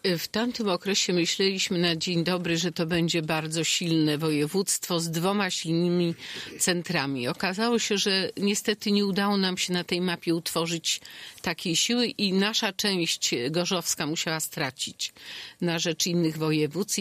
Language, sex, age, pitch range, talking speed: Polish, female, 50-69, 165-200 Hz, 145 wpm